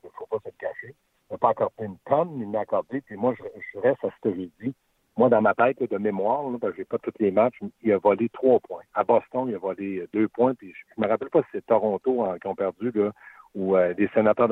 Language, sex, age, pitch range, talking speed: French, male, 60-79, 100-125 Hz, 280 wpm